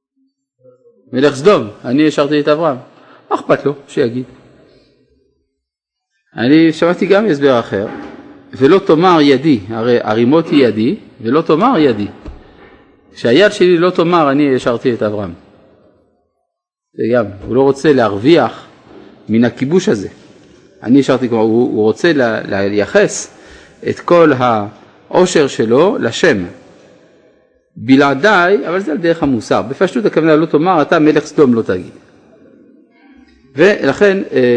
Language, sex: Hebrew, male